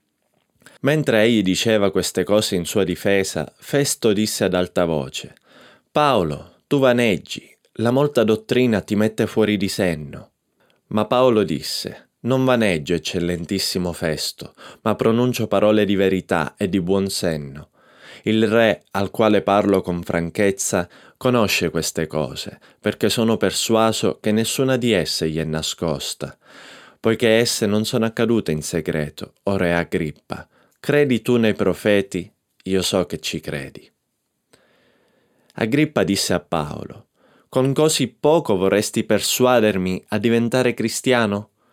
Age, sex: 20-39, male